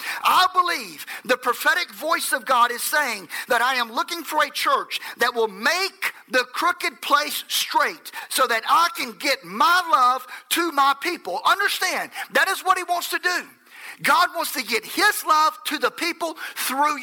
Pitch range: 245-335 Hz